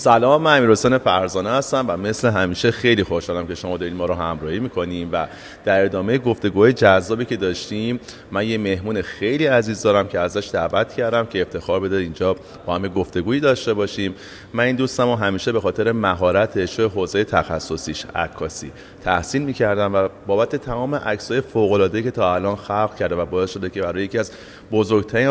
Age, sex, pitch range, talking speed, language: 30-49, male, 95-125 Hz, 175 wpm, Persian